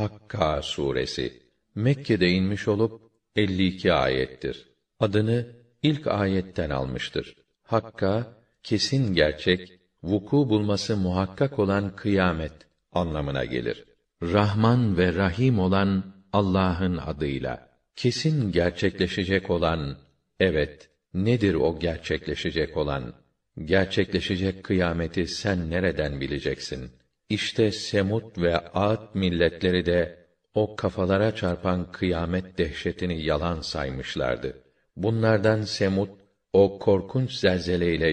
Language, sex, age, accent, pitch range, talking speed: Turkish, male, 50-69, native, 85-105 Hz, 95 wpm